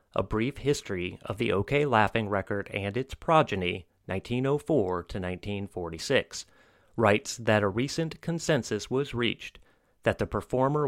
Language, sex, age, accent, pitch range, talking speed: English, male, 30-49, American, 100-135 Hz, 120 wpm